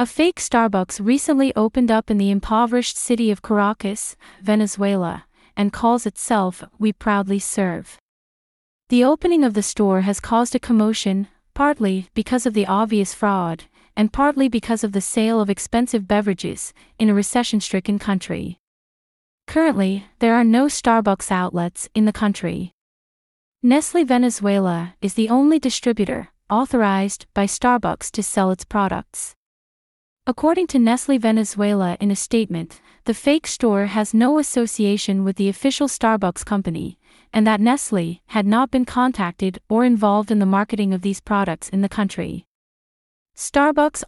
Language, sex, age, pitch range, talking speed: English, female, 30-49, 195-245 Hz, 145 wpm